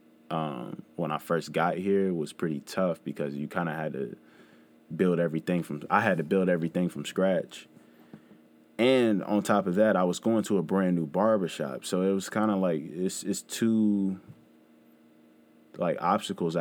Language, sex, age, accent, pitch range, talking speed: English, male, 20-39, American, 80-95 Hz, 175 wpm